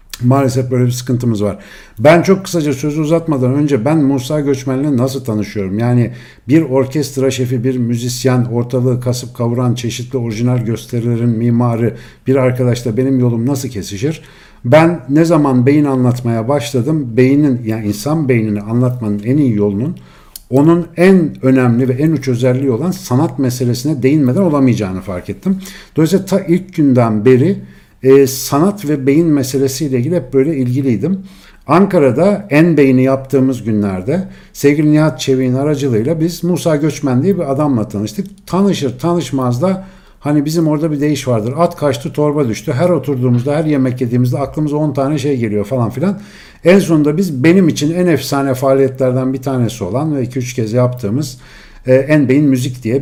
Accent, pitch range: native, 125-150 Hz